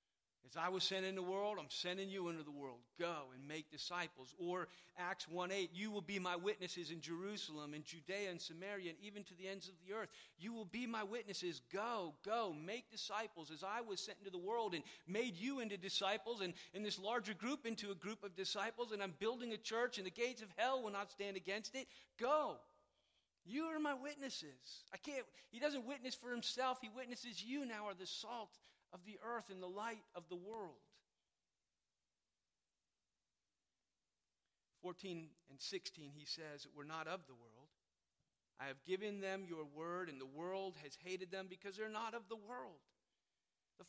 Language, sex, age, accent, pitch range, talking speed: English, male, 40-59, American, 175-225 Hz, 195 wpm